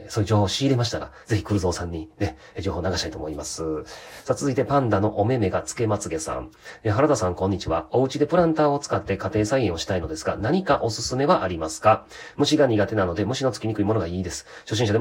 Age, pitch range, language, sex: 40-59, 90-120 Hz, Japanese, male